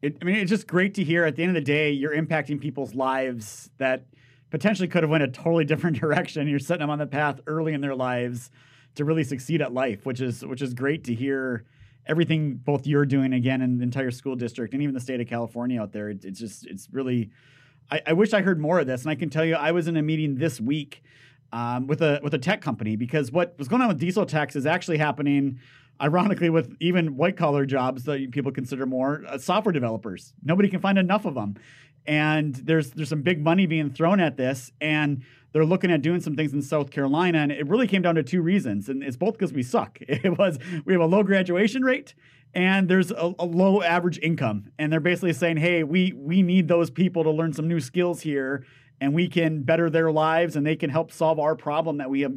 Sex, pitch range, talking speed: male, 135-170 Hz, 240 wpm